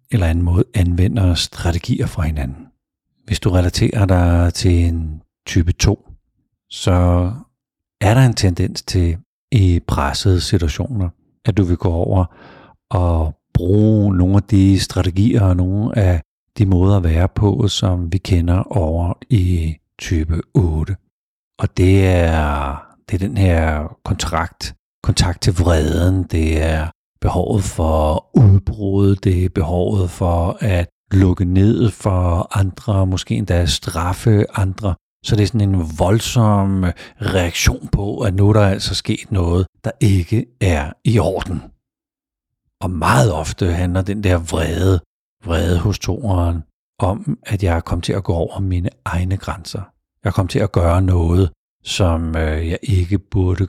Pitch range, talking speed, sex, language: 85-100 Hz, 145 wpm, male, Danish